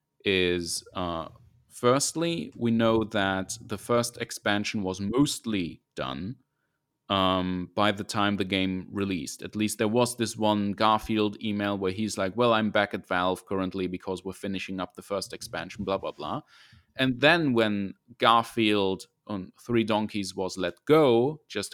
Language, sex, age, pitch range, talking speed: English, male, 30-49, 105-125 Hz, 155 wpm